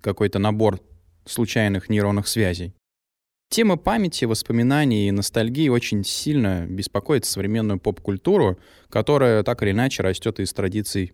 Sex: male